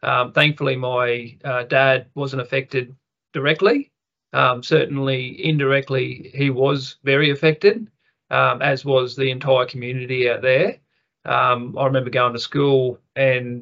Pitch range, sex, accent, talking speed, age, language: 125-140 Hz, male, Australian, 130 wpm, 30-49, English